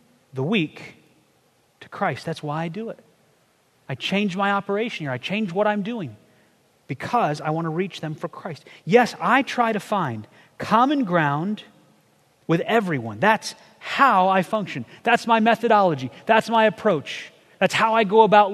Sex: male